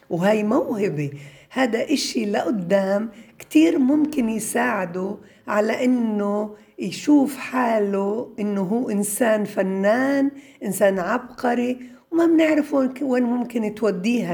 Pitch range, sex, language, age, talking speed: 195-255 Hz, female, Arabic, 60-79, 95 wpm